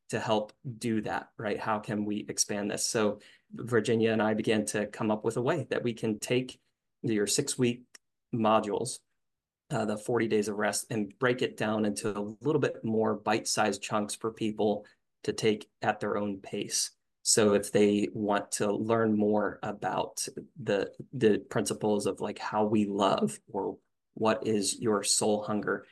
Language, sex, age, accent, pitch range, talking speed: English, male, 20-39, American, 105-120 Hz, 175 wpm